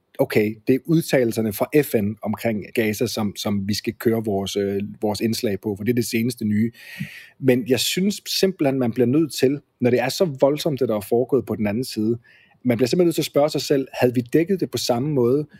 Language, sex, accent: Danish, male, native